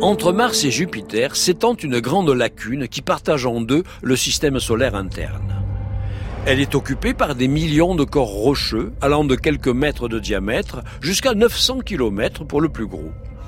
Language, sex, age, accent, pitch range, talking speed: French, male, 60-79, French, 105-150 Hz, 170 wpm